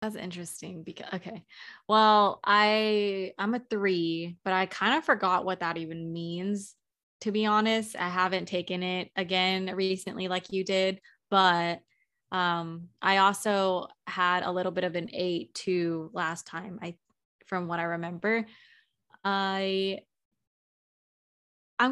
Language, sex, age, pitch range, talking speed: English, female, 20-39, 180-215 Hz, 140 wpm